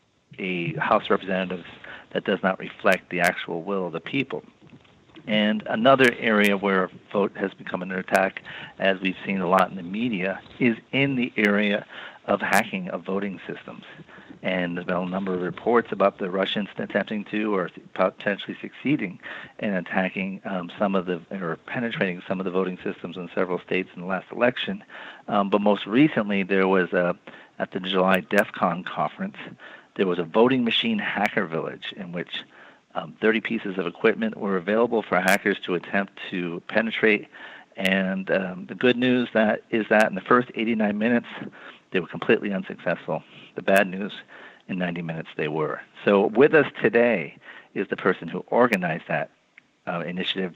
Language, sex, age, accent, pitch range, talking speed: English, male, 50-69, American, 95-115 Hz, 175 wpm